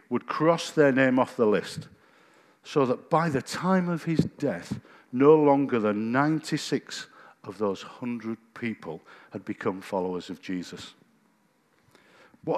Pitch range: 110-155 Hz